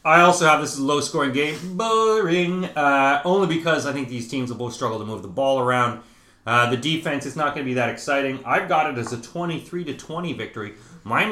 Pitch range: 125-175 Hz